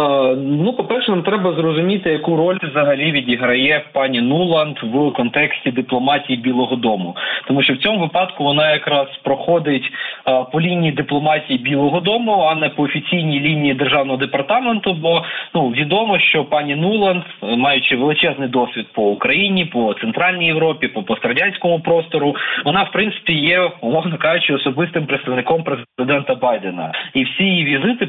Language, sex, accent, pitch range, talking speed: Ukrainian, male, native, 135-175 Hz, 140 wpm